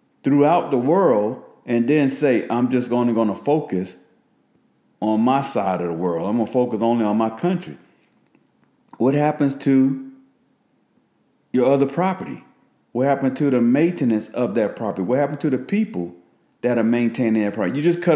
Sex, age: male, 50-69